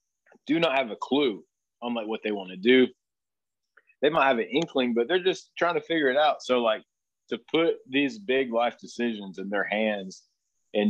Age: 30-49